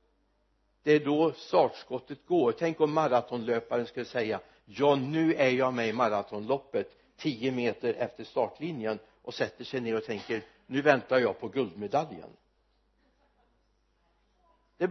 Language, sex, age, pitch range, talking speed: Swedish, male, 60-79, 135-180 Hz, 135 wpm